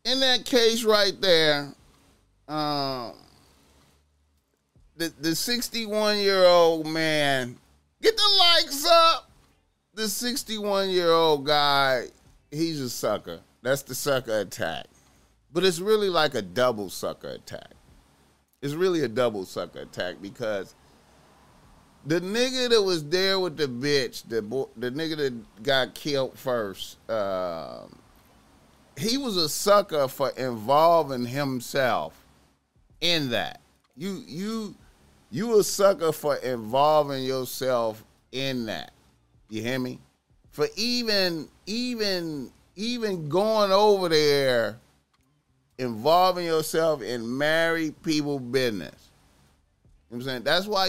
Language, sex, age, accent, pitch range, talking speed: English, male, 30-49, American, 125-185 Hz, 110 wpm